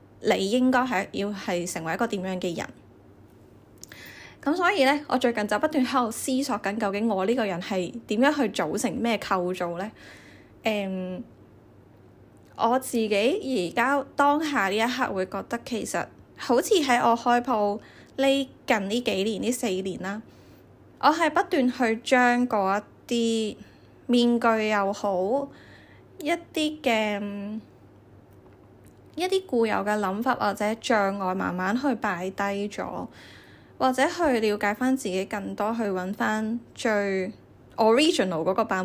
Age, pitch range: 10-29, 190-250 Hz